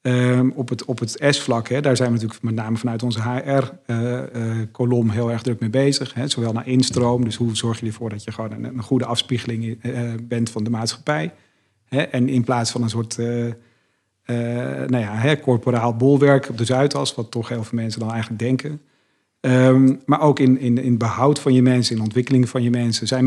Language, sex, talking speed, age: Dutch, male, 200 wpm, 50-69